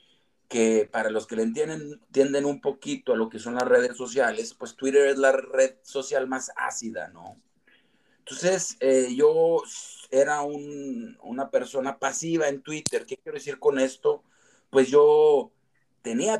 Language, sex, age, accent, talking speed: Spanish, male, 40-59, Mexican, 155 wpm